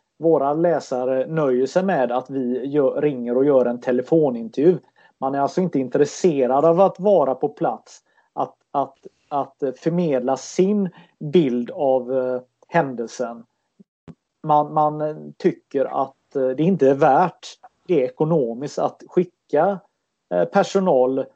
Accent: native